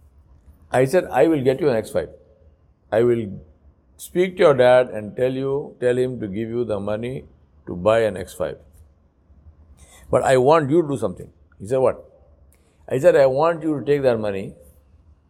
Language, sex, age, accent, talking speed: English, male, 60-79, Indian, 185 wpm